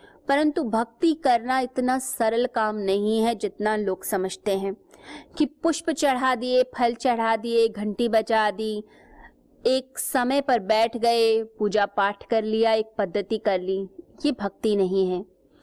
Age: 20-39